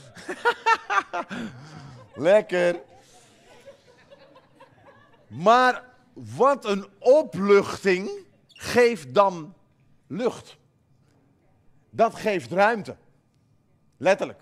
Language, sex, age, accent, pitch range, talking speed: Dutch, male, 40-59, Dutch, 155-225 Hz, 50 wpm